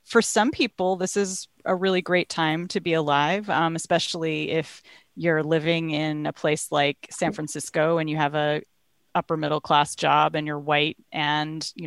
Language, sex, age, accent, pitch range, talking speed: English, female, 30-49, American, 155-205 Hz, 180 wpm